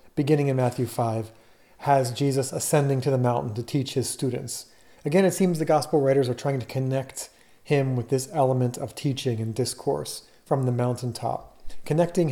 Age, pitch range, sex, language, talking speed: 40-59, 120-150 Hz, male, English, 175 wpm